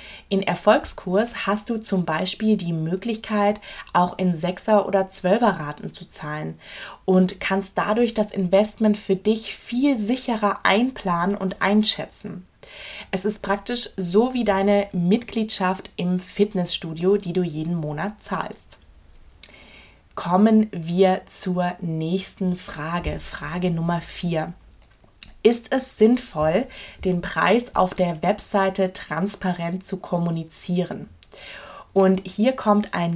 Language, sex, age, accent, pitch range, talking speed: German, female, 20-39, German, 175-210 Hz, 120 wpm